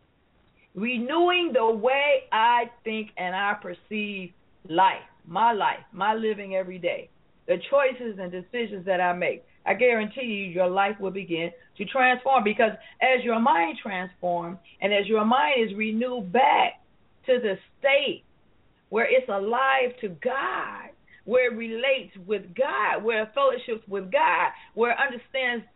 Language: English